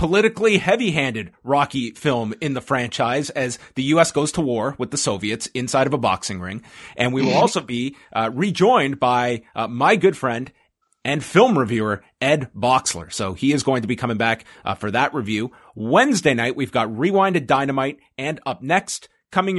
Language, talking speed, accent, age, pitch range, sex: English, 185 wpm, American, 30-49, 115-160 Hz, male